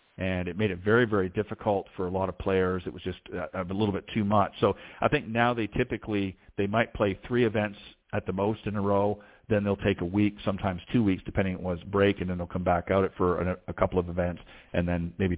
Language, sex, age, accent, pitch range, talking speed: English, male, 40-59, American, 90-105 Hz, 250 wpm